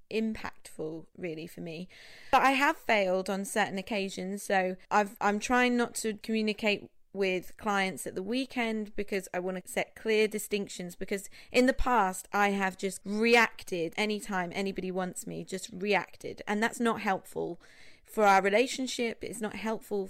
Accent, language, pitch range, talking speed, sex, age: British, English, 185-220 Hz, 160 wpm, female, 30-49